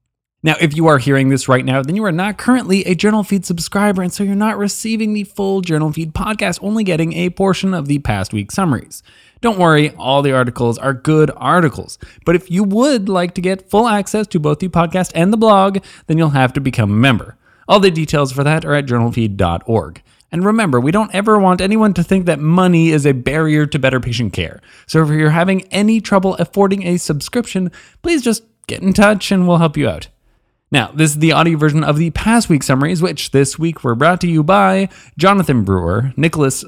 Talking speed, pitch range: 220 wpm, 130-185 Hz